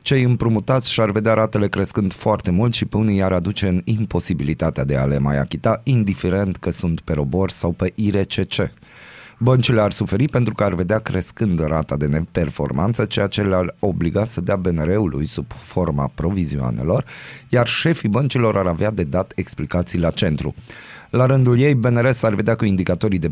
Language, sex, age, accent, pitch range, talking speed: Romanian, male, 30-49, native, 85-115 Hz, 170 wpm